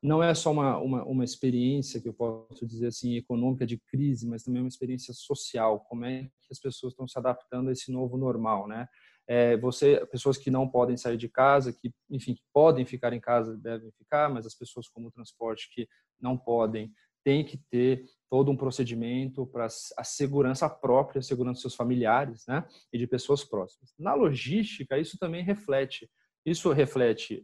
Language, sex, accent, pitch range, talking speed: Portuguese, male, Brazilian, 120-155 Hz, 190 wpm